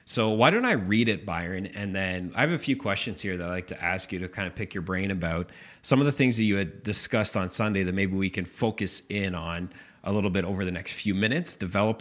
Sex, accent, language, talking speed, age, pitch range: male, American, English, 270 wpm, 30-49, 95-125 Hz